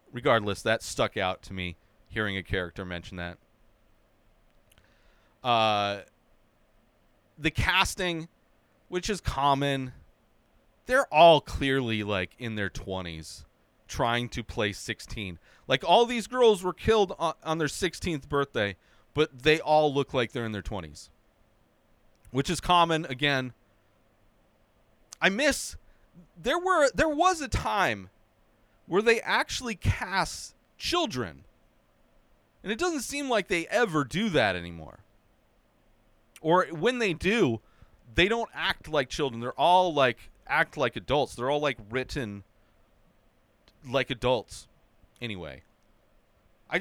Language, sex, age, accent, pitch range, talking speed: English, male, 30-49, American, 105-165 Hz, 125 wpm